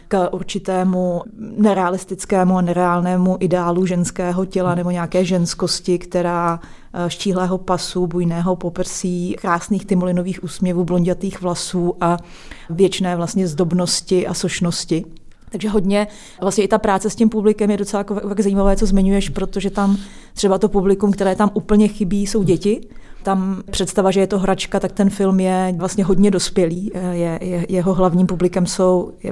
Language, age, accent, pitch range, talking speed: Czech, 30-49, native, 180-200 Hz, 150 wpm